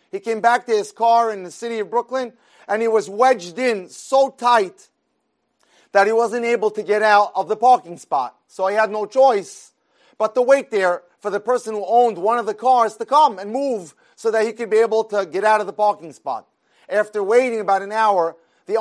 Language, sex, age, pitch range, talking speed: English, male, 30-49, 210-245 Hz, 225 wpm